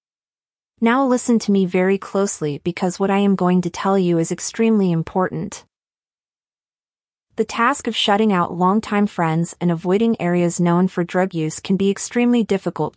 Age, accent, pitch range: 30-49, American, 170-215 Hz